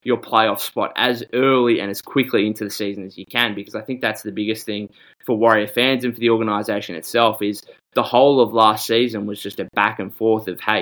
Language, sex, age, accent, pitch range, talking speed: English, male, 20-39, Australian, 105-115 Hz, 240 wpm